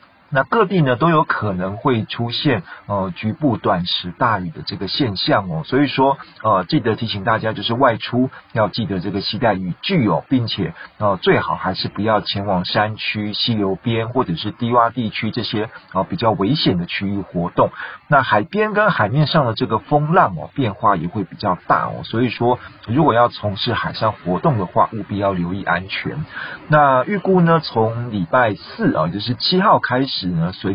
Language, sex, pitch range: Chinese, male, 100-140 Hz